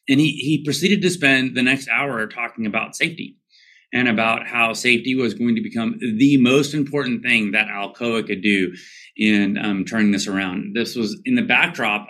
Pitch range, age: 105-135 Hz, 30-49